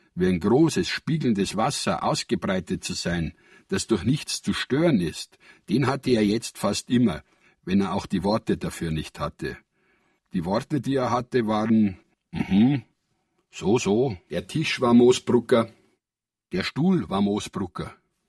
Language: German